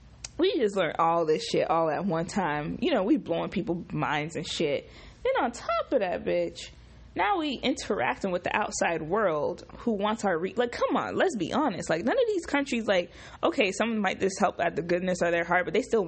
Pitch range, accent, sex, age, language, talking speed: 190-300 Hz, American, female, 20-39, English, 230 wpm